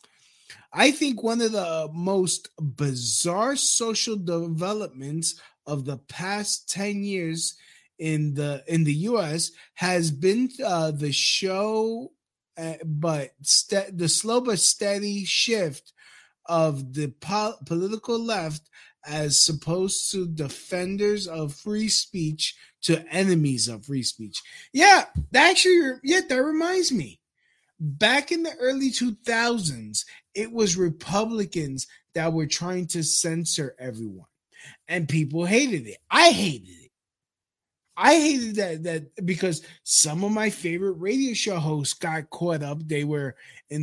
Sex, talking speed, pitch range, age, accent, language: male, 130 wpm, 155-215 Hz, 20-39, American, English